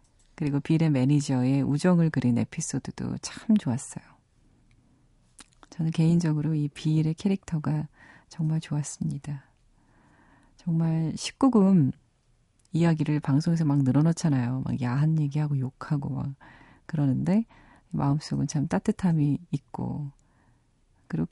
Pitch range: 135-170 Hz